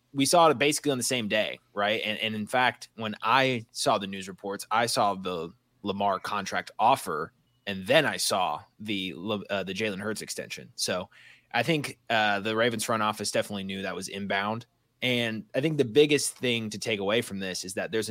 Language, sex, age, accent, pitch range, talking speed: English, male, 20-39, American, 100-125 Hz, 205 wpm